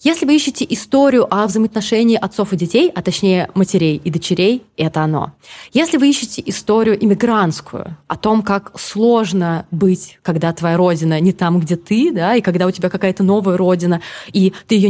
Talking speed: 175 wpm